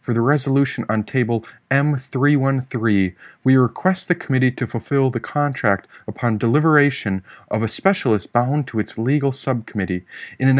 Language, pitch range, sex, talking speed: English, 110-145 Hz, male, 145 wpm